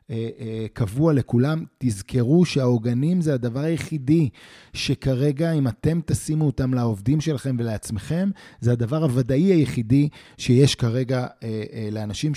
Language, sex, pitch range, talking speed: Hebrew, male, 120-150 Hz, 105 wpm